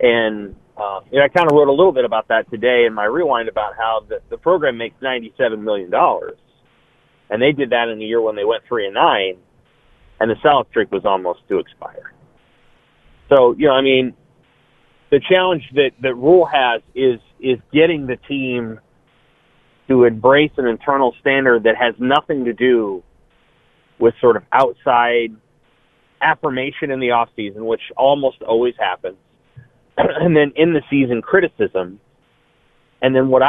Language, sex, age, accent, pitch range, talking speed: English, male, 30-49, American, 120-170 Hz, 170 wpm